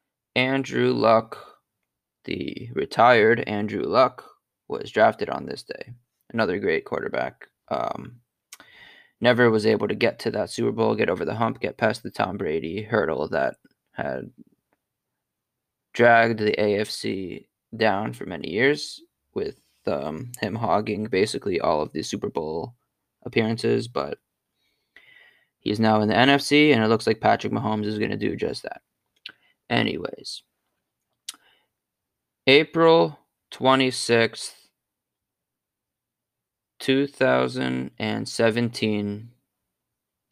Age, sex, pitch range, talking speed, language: 20-39, male, 105-125 Hz, 115 wpm, English